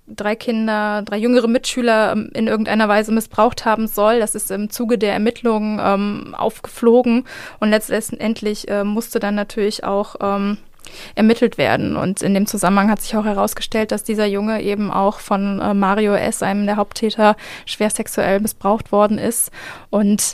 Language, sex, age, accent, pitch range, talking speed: German, female, 20-39, German, 205-220 Hz, 160 wpm